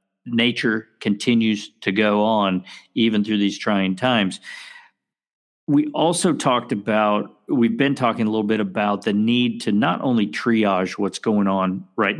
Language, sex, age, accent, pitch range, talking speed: English, male, 50-69, American, 105-120 Hz, 150 wpm